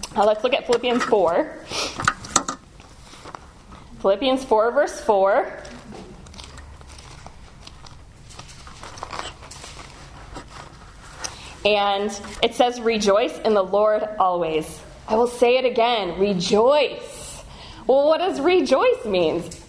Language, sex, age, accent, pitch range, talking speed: English, female, 20-39, American, 210-290 Hz, 90 wpm